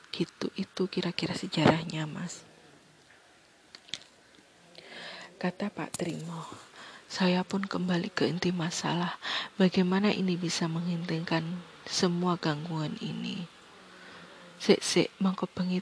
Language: Indonesian